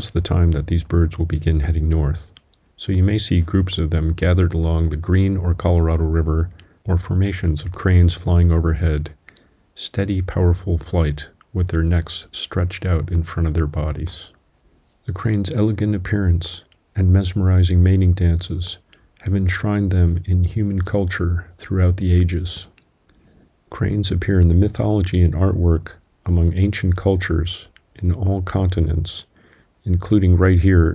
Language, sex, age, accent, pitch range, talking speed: English, male, 40-59, American, 85-95 Hz, 145 wpm